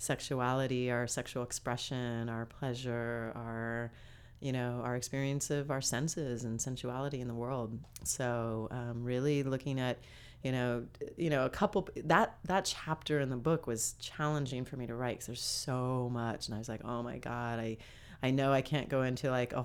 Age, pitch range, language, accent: 30-49, 120-135 Hz, English, American